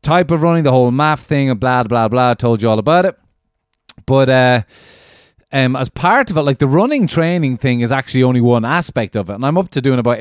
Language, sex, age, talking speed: English, male, 30-49, 245 wpm